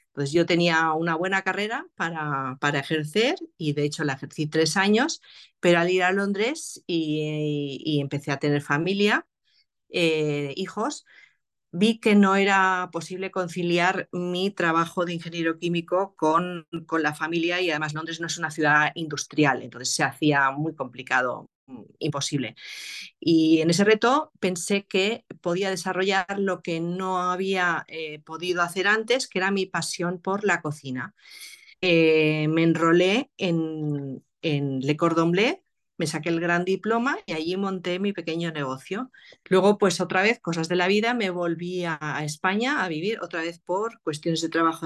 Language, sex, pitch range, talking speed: Spanish, female, 155-195 Hz, 160 wpm